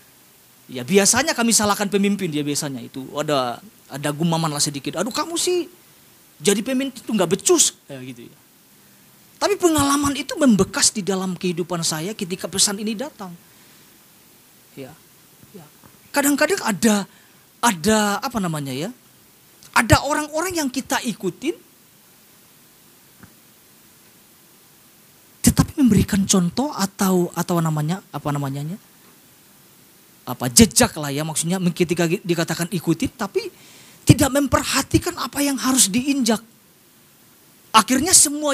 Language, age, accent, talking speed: Indonesian, 30-49, native, 115 wpm